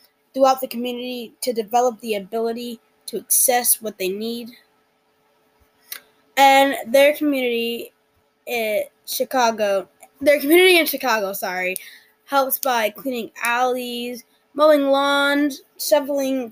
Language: English